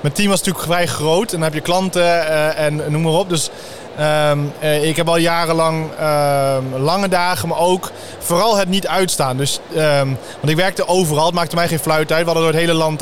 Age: 20-39